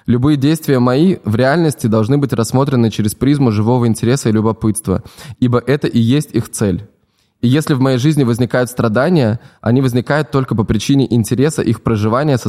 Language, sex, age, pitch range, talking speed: Russian, male, 20-39, 110-135 Hz, 175 wpm